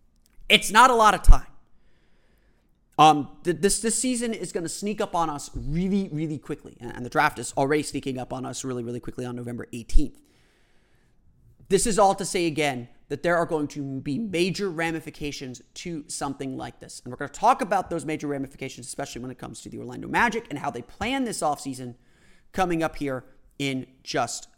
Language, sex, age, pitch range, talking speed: English, male, 30-49, 135-195 Hz, 200 wpm